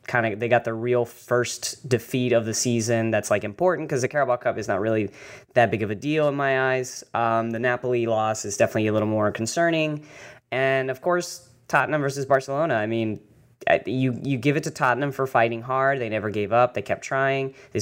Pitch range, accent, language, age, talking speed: 115-135 Hz, American, English, 10-29, 215 wpm